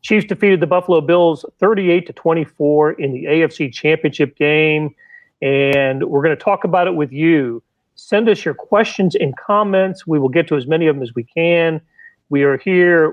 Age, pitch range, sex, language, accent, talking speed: 40-59, 150-180 Hz, male, English, American, 185 wpm